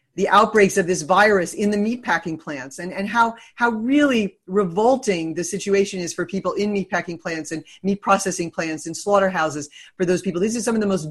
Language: English